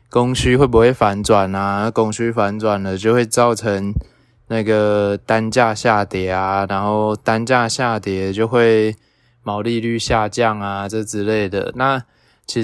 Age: 20-39